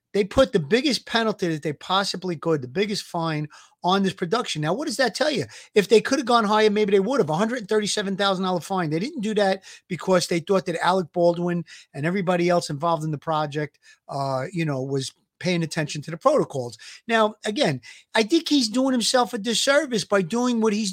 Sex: male